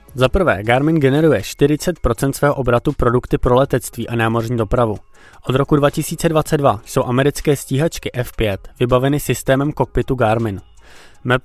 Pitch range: 115-140 Hz